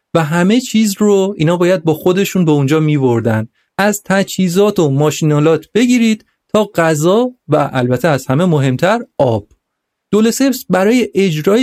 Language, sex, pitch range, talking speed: Persian, male, 145-205 Hz, 140 wpm